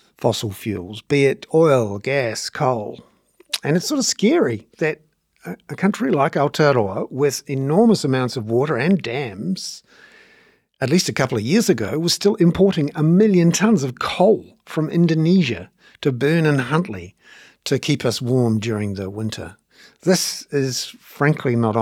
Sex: male